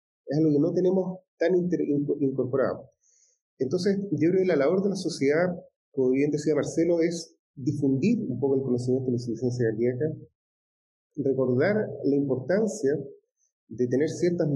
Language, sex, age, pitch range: Spanish, male, 30-49, 125-175 Hz